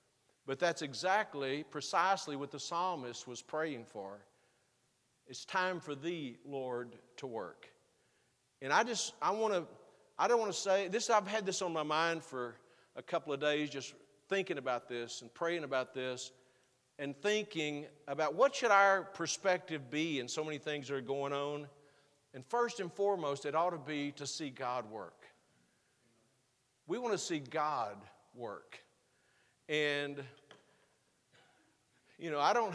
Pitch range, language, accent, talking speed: 135-180 Hz, English, American, 160 wpm